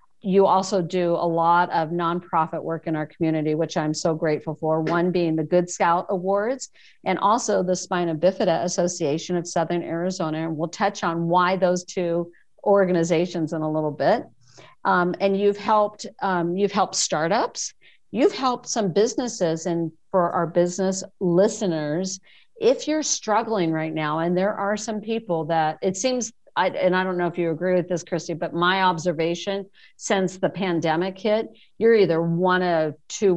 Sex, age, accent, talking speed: female, 50-69, American, 175 wpm